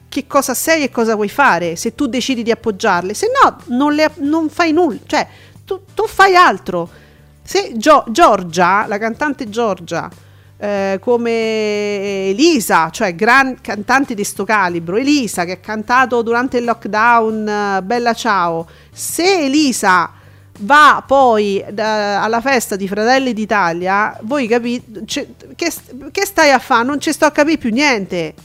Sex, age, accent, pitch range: female, 40-59, native, 200-280 Hz